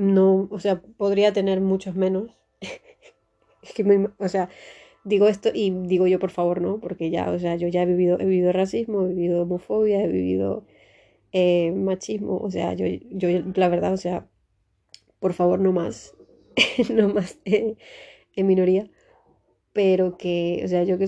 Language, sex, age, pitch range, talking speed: Spanish, female, 30-49, 175-210 Hz, 175 wpm